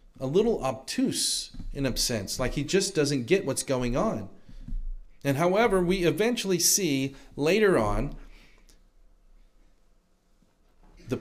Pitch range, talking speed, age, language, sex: 110-160 Hz, 120 wpm, 40-59, English, male